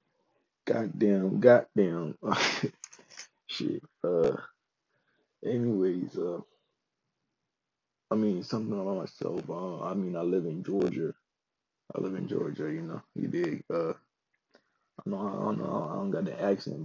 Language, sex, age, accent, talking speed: English, male, 20-39, American, 130 wpm